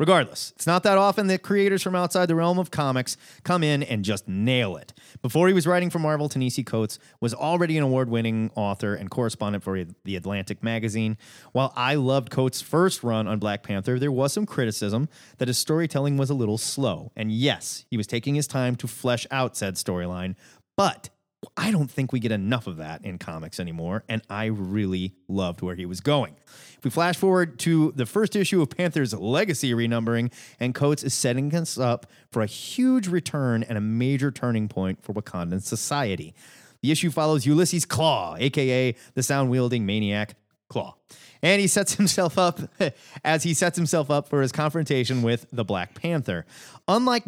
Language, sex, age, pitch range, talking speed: English, male, 30-49, 110-155 Hz, 190 wpm